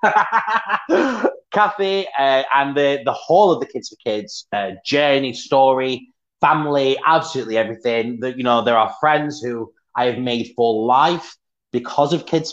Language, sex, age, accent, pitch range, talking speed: English, male, 30-49, British, 120-160 Hz, 155 wpm